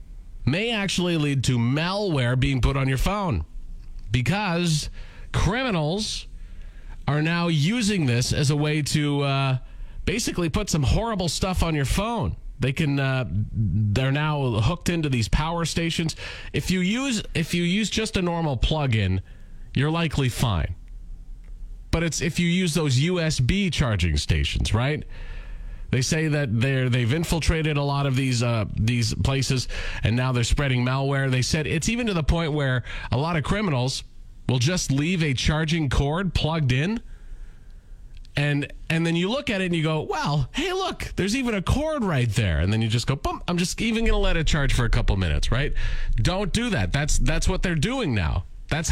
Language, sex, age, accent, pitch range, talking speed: English, male, 30-49, American, 120-170 Hz, 185 wpm